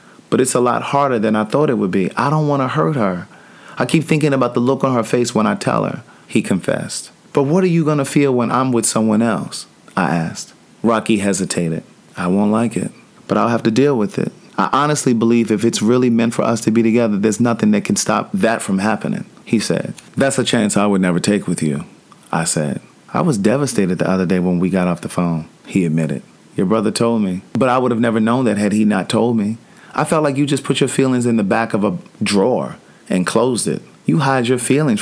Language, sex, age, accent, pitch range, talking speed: English, male, 30-49, American, 105-135 Hz, 245 wpm